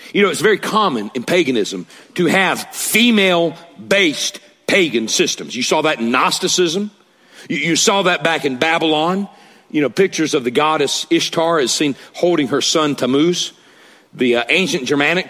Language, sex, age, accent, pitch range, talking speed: English, male, 40-59, American, 150-205 Hz, 160 wpm